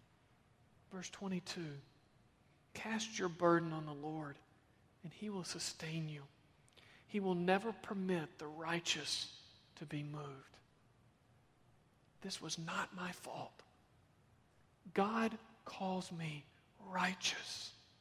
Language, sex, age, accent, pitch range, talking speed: English, male, 40-59, American, 135-180 Hz, 105 wpm